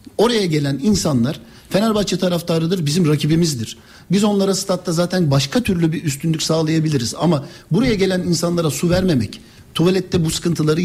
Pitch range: 165-210 Hz